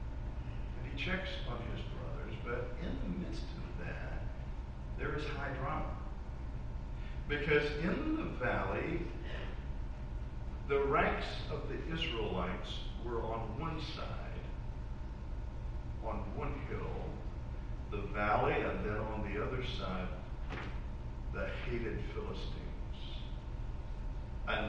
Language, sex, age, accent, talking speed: English, male, 50-69, American, 100 wpm